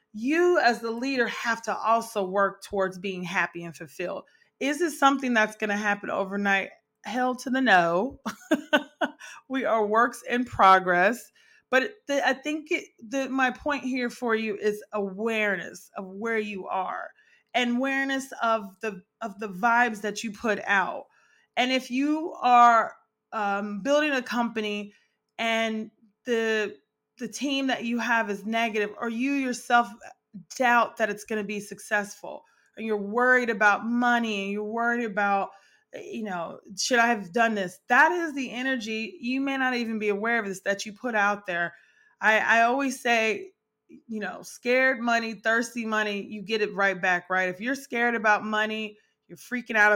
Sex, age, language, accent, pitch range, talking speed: female, 30-49, English, American, 205-250 Hz, 170 wpm